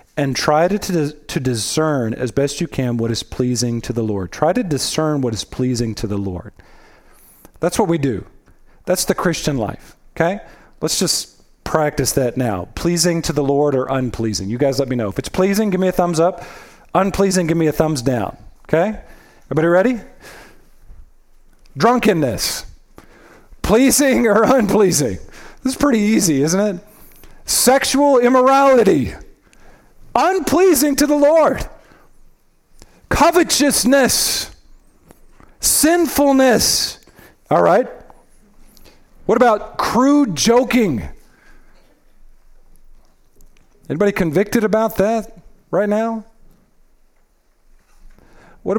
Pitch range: 135-230 Hz